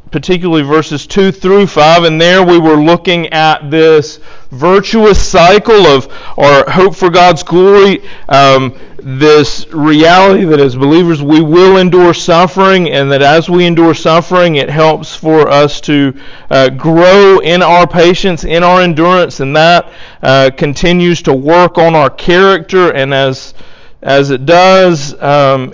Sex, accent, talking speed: male, American, 150 wpm